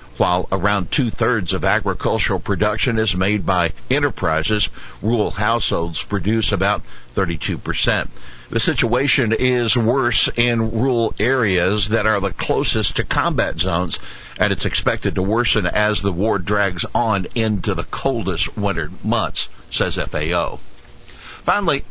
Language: English